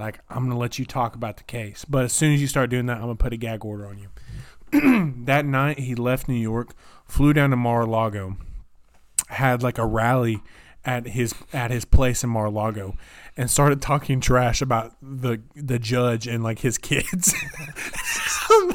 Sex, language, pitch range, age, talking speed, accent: male, English, 115-135 Hz, 20-39, 195 wpm, American